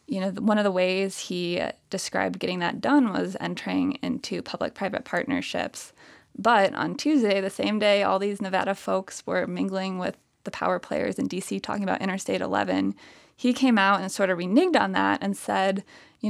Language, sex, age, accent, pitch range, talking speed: English, female, 20-39, American, 185-230 Hz, 185 wpm